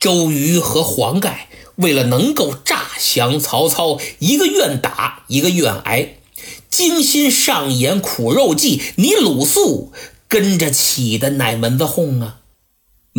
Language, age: Chinese, 50-69